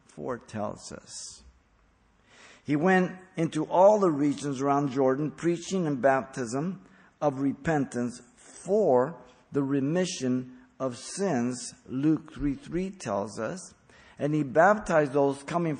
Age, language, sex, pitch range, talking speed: 50-69, English, male, 120-155 Hz, 120 wpm